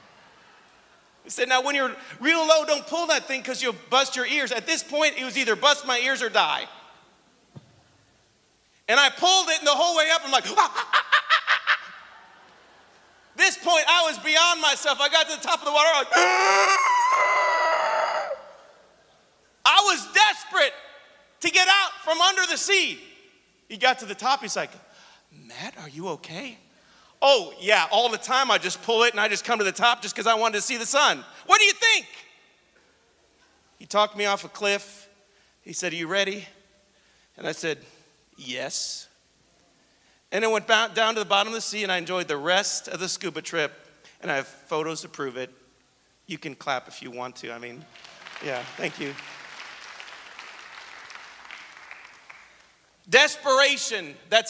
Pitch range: 200-315 Hz